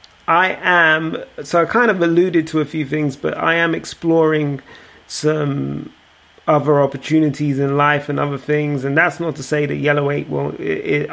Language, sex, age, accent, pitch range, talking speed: English, male, 30-49, British, 140-155 Hz, 185 wpm